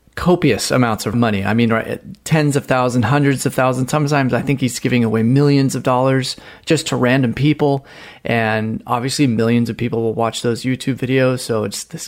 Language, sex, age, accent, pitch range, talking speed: English, male, 30-49, American, 115-140 Hz, 195 wpm